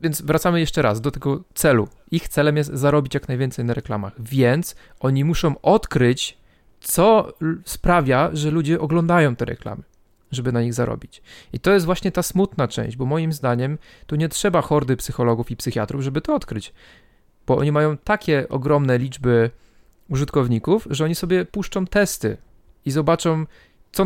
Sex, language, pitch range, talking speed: male, Polish, 120-155 Hz, 160 wpm